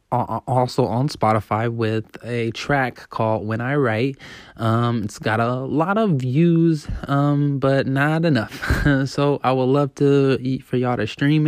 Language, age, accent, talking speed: English, 20-39, American, 160 wpm